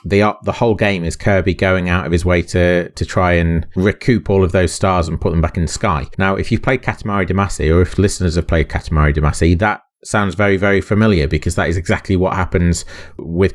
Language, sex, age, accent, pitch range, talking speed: English, male, 30-49, British, 85-100 Hz, 230 wpm